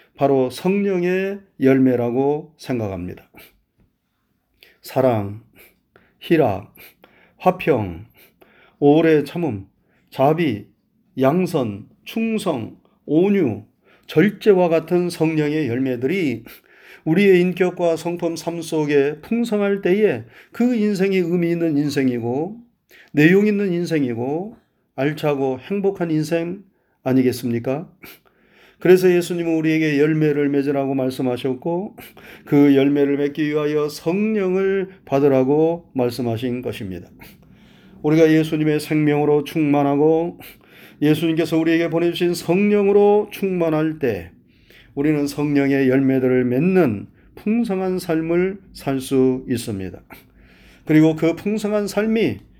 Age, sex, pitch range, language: 40-59, male, 135-180 Hz, Korean